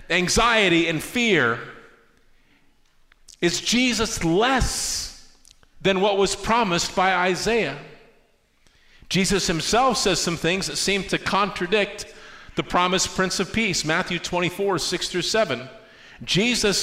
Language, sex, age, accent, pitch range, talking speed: English, male, 50-69, American, 155-210 Hz, 115 wpm